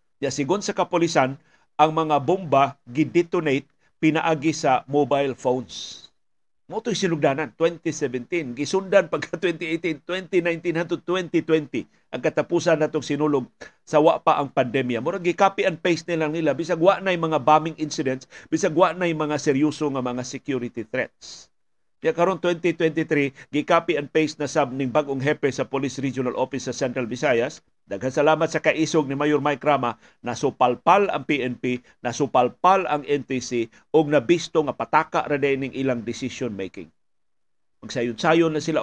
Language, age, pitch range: Filipino, 50-69, 135-170 Hz